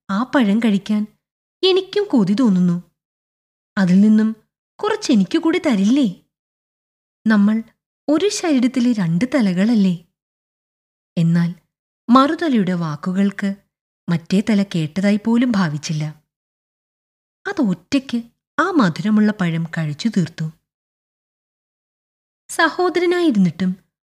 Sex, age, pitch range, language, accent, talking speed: female, 20-39, 170-250 Hz, Malayalam, native, 75 wpm